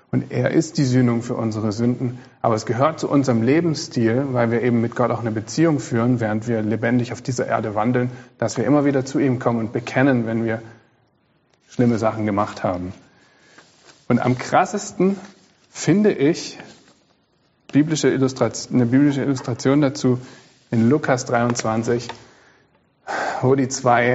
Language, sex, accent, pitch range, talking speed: German, male, German, 120-145 Hz, 140 wpm